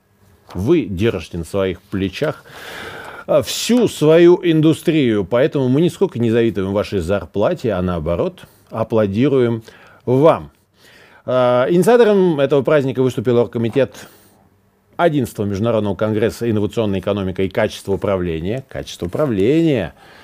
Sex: male